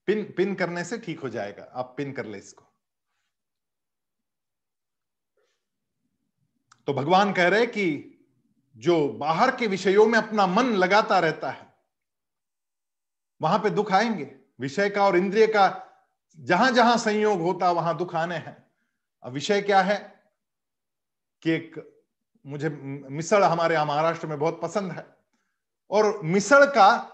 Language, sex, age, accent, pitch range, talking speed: Hindi, male, 40-59, native, 165-220 Hz, 135 wpm